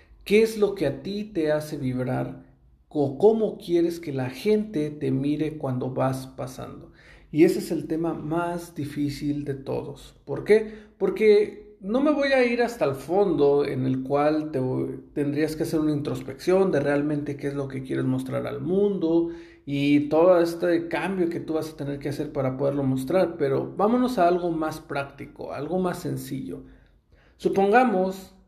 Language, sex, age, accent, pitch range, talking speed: Spanish, male, 40-59, Mexican, 140-185 Hz, 175 wpm